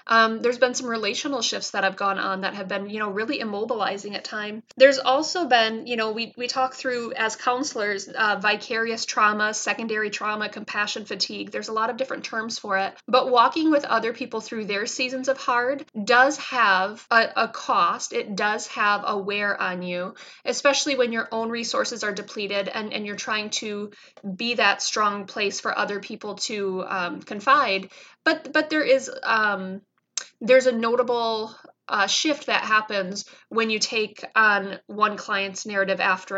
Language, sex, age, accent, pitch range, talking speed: English, female, 20-39, American, 200-240 Hz, 180 wpm